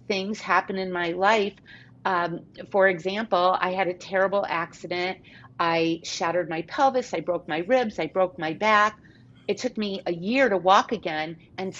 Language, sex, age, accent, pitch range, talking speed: English, female, 40-59, American, 175-220 Hz, 175 wpm